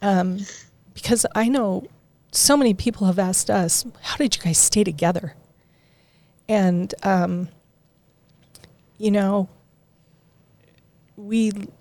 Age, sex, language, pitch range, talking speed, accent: 40-59, female, English, 155-225 Hz, 105 wpm, American